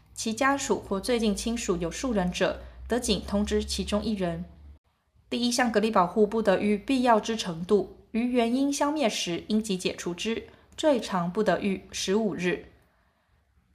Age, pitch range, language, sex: 20-39, 185-235 Hz, Chinese, female